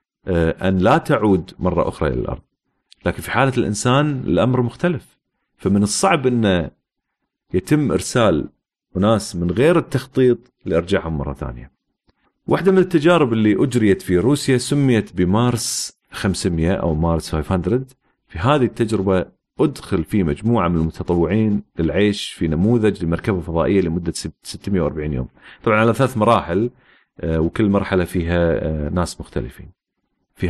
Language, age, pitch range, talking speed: Arabic, 40-59, 85-120 Hz, 125 wpm